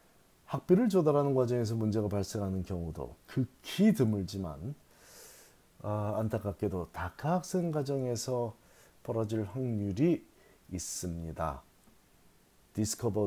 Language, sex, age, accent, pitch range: Korean, male, 40-59, native, 95-130 Hz